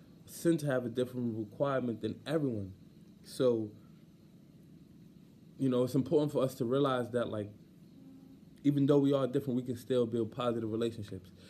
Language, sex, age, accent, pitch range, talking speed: English, male, 20-39, American, 105-135 Hz, 150 wpm